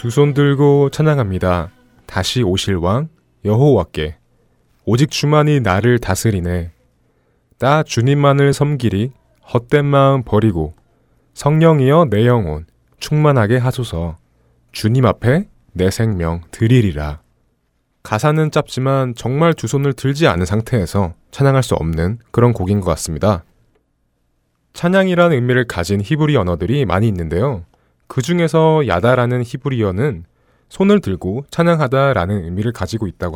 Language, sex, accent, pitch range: Korean, male, native, 90-140 Hz